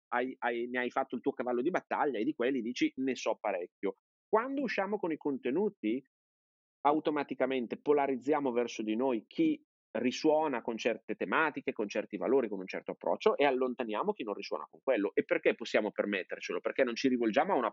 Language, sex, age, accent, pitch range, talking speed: Italian, male, 30-49, native, 120-170 Hz, 185 wpm